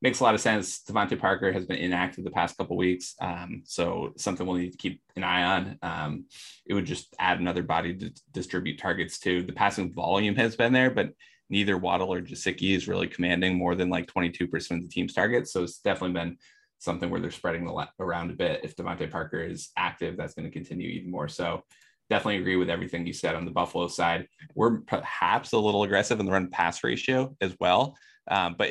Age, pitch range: 20-39, 90-100 Hz